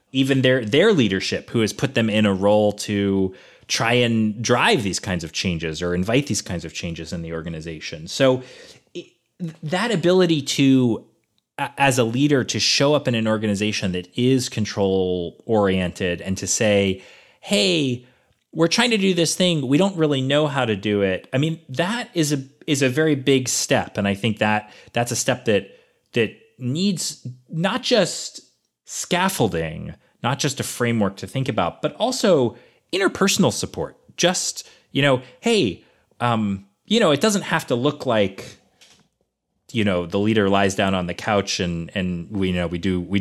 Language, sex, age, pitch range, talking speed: English, male, 30-49, 100-155 Hz, 175 wpm